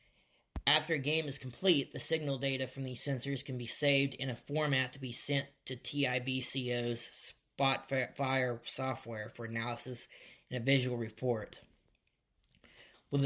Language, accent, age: English, American, 30-49